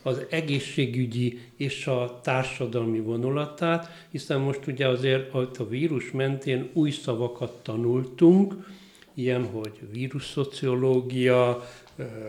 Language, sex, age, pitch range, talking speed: Hungarian, male, 60-79, 120-140 Hz, 95 wpm